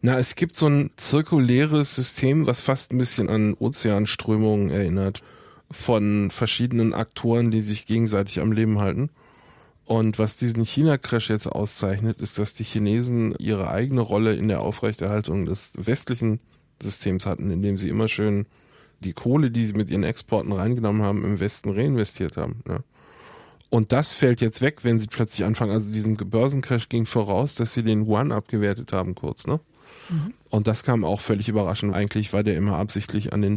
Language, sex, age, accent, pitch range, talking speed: German, male, 20-39, German, 100-115 Hz, 170 wpm